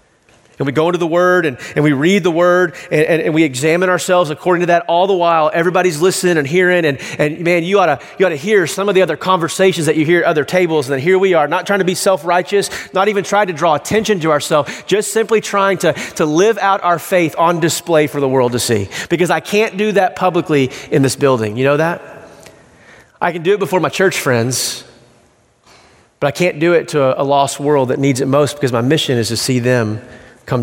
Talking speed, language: 240 wpm, English